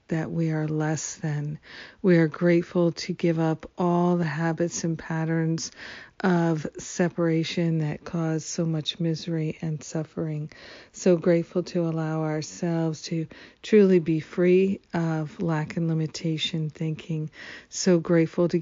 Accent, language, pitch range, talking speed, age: American, English, 160-175 Hz, 135 wpm, 50-69